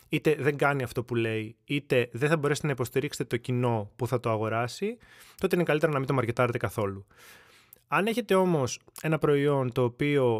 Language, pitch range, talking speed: Greek, 125-150 Hz, 190 wpm